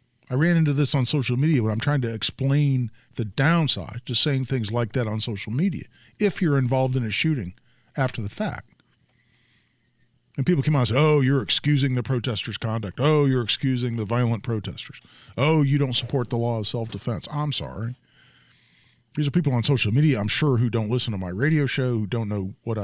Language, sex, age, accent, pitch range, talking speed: English, male, 40-59, American, 115-145 Hz, 205 wpm